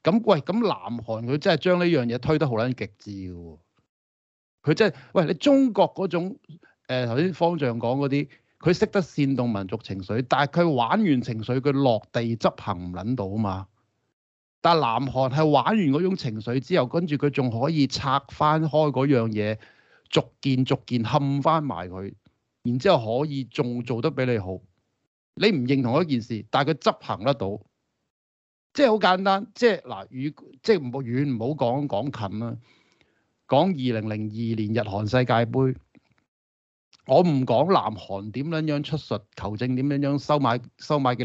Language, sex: Chinese, male